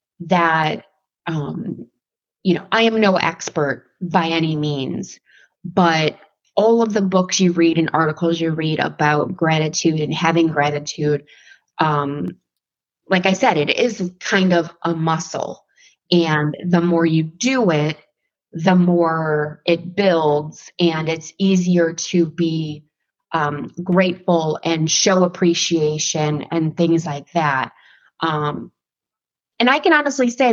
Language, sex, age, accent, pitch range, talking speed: English, female, 20-39, American, 160-195 Hz, 130 wpm